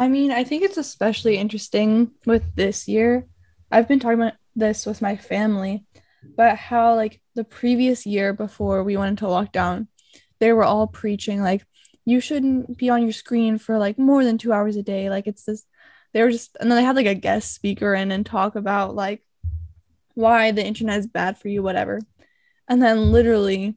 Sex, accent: female, American